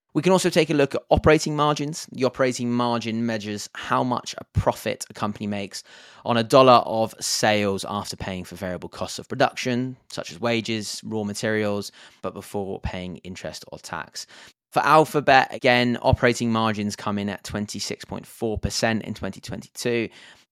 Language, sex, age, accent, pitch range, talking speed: English, male, 20-39, British, 100-125 Hz, 155 wpm